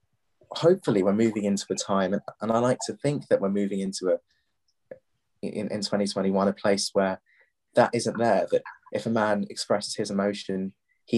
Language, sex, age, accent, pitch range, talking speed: English, male, 20-39, British, 100-125 Hz, 175 wpm